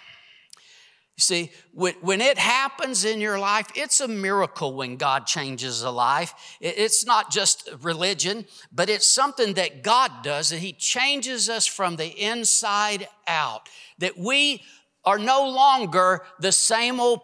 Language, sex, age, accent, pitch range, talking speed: English, male, 50-69, American, 185-265 Hz, 140 wpm